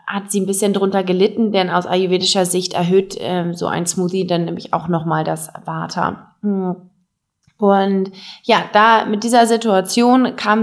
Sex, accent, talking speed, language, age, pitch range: female, German, 160 wpm, English, 20-39, 180-215 Hz